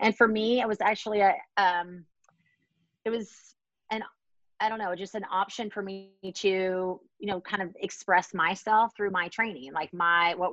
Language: English